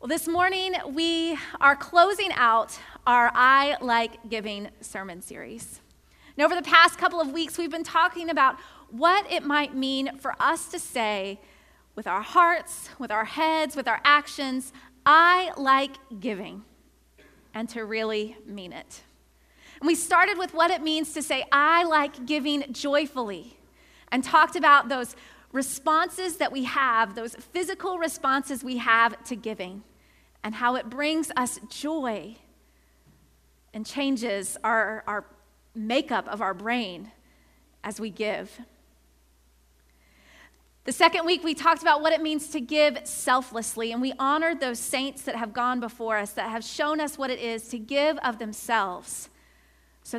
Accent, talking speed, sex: American, 155 wpm, female